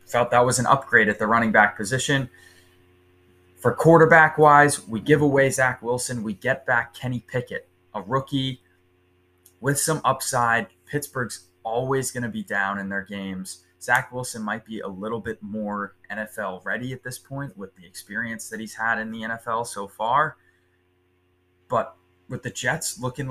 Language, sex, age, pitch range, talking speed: English, male, 20-39, 95-130 Hz, 165 wpm